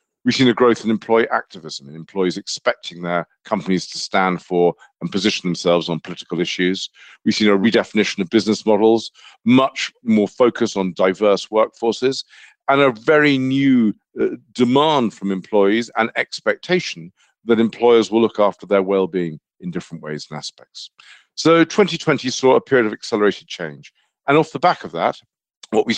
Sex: male